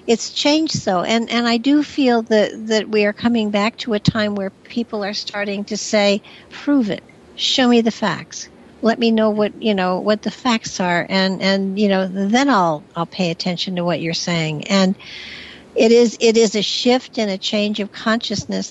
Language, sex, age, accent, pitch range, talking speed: English, female, 60-79, American, 185-220 Hz, 205 wpm